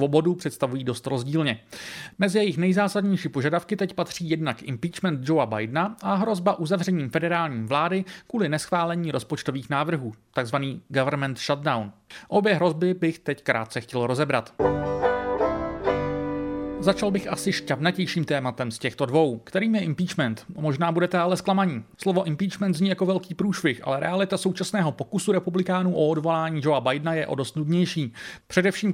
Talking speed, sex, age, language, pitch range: 140 wpm, male, 40-59, Czech, 135-185 Hz